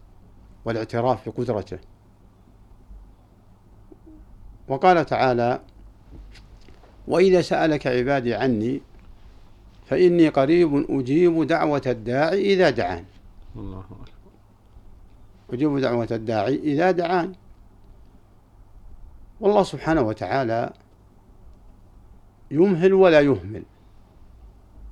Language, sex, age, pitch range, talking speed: Arabic, male, 60-79, 100-130 Hz, 65 wpm